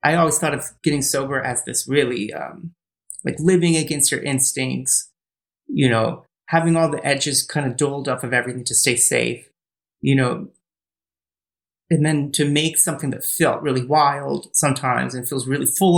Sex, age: male, 30-49